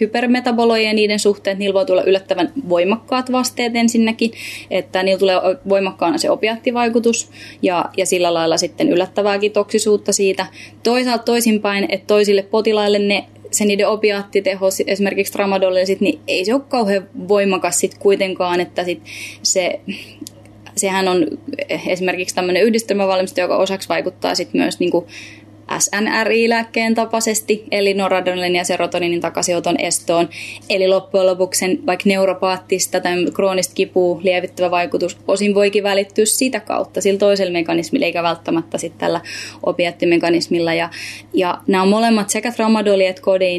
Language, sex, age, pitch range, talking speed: Finnish, female, 20-39, 180-210 Hz, 130 wpm